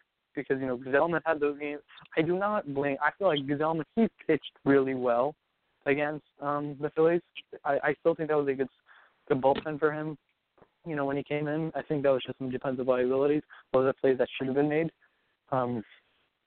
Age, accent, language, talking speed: 20-39, American, English, 205 wpm